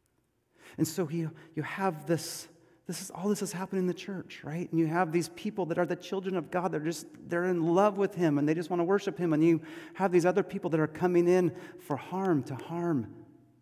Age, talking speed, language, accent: 40-59, 240 wpm, English, American